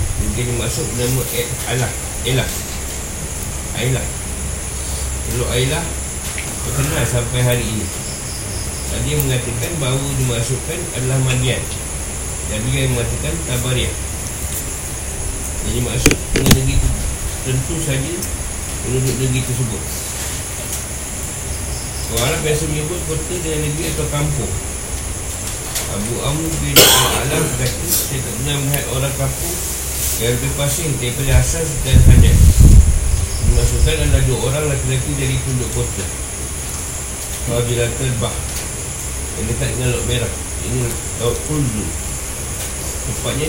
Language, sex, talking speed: Malay, male, 110 wpm